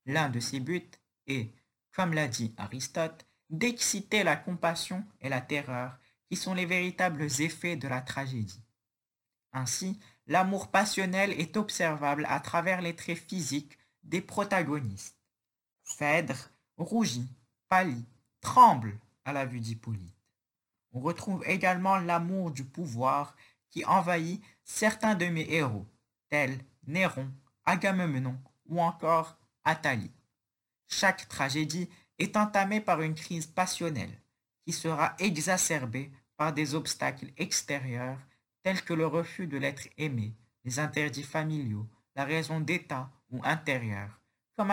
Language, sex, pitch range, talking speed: French, male, 125-175 Hz, 125 wpm